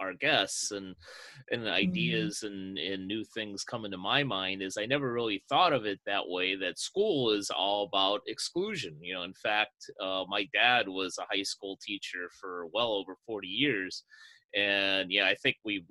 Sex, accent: male, American